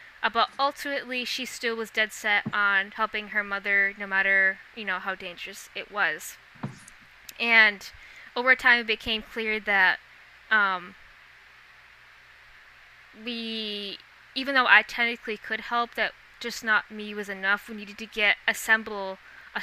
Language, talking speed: English, 145 wpm